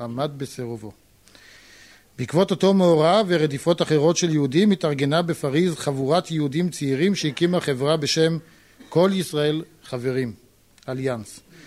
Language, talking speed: Hebrew, 110 wpm